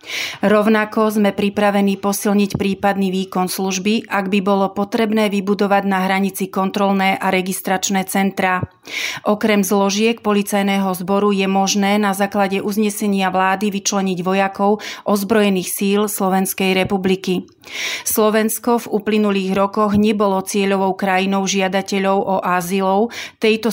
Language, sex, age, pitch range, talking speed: Slovak, female, 30-49, 190-210 Hz, 115 wpm